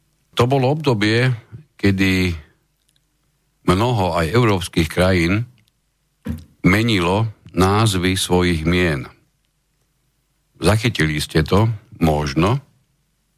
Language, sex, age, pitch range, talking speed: Slovak, male, 50-69, 75-105 Hz, 70 wpm